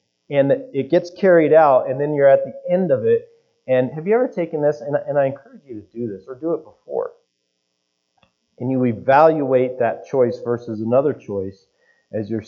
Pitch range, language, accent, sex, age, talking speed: 110-185 Hz, English, American, male, 30-49, 195 wpm